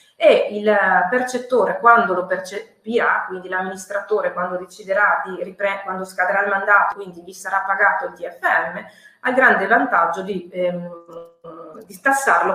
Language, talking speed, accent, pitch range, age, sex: Italian, 135 wpm, native, 185-225 Hz, 30-49, female